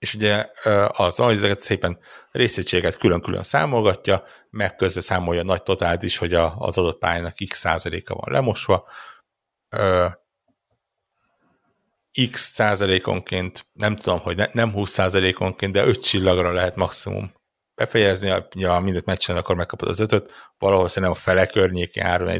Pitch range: 90-105 Hz